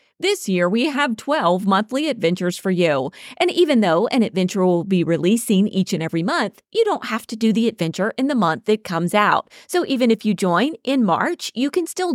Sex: female